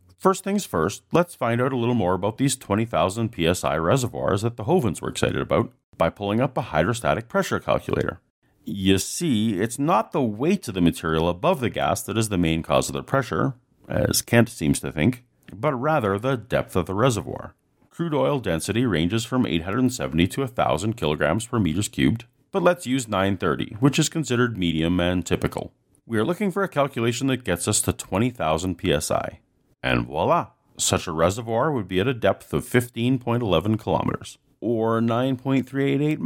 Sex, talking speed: male, 180 wpm